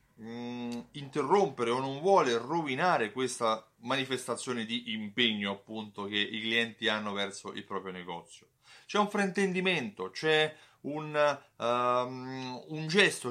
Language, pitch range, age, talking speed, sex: Italian, 115-155 Hz, 30-49, 115 wpm, male